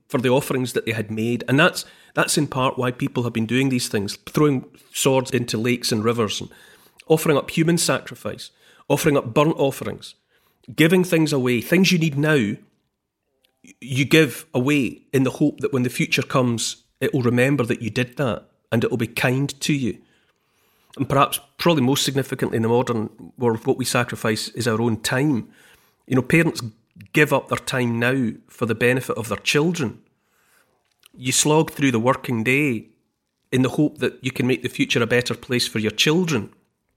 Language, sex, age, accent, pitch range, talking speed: English, male, 40-59, British, 120-145 Hz, 190 wpm